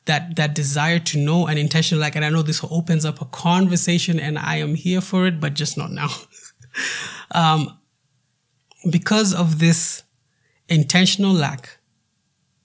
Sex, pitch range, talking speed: male, 145-175 Hz, 155 wpm